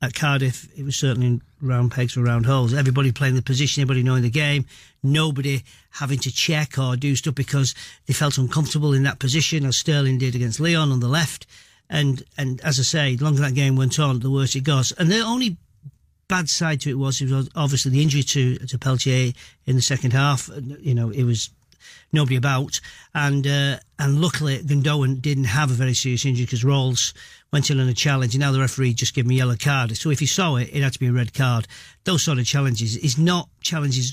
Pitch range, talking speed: 130-150 Hz, 225 wpm